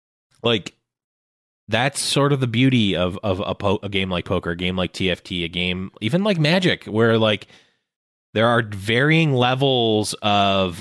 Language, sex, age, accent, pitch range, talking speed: English, male, 20-39, American, 90-115 Hz, 165 wpm